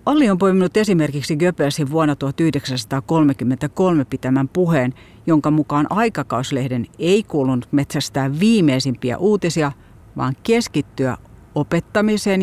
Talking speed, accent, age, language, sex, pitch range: 95 wpm, native, 50-69, Finnish, female, 125-165 Hz